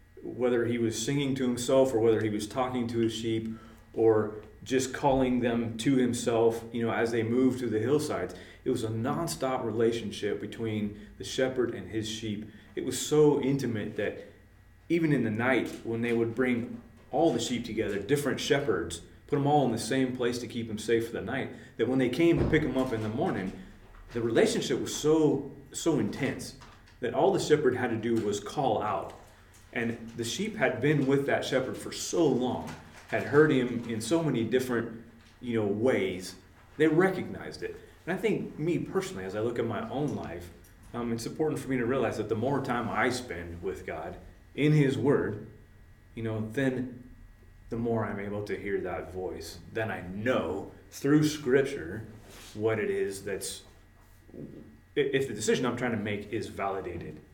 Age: 30-49